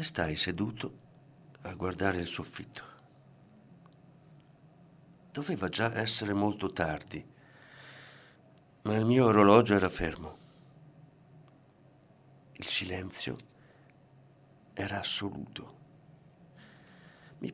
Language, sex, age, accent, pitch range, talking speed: Italian, male, 50-69, native, 100-145 Hz, 75 wpm